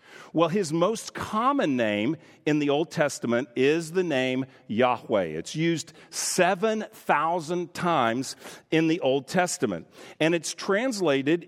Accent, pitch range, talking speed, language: American, 140-175 Hz, 125 wpm, English